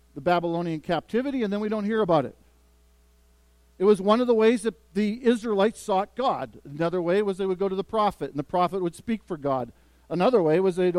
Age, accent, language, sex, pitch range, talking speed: 50-69, American, English, male, 135-205 Hz, 225 wpm